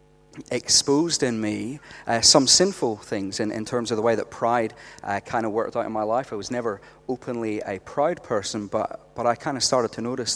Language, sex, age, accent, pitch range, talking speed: English, male, 30-49, British, 105-125 Hz, 220 wpm